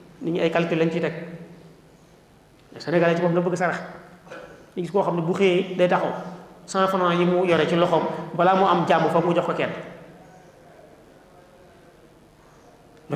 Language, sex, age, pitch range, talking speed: French, male, 30-49, 155-175 Hz, 135 wpm